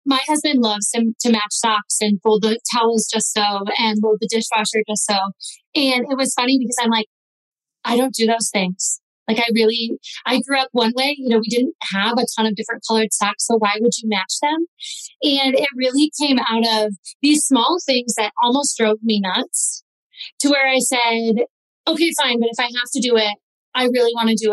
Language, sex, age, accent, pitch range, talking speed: English, female, 30-49, American, 215-255 Hz, 215 wpm